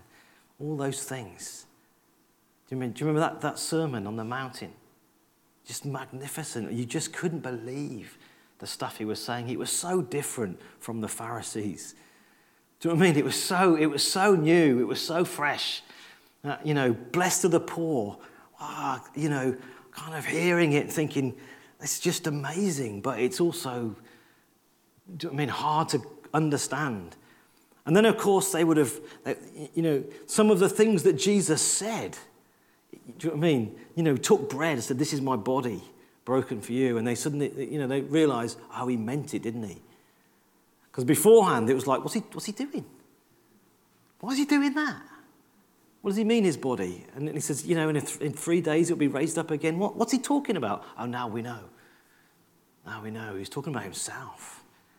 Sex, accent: male, British